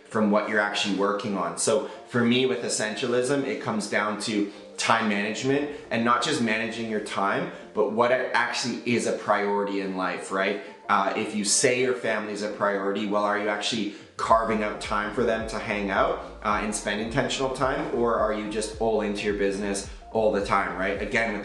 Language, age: English, 20-39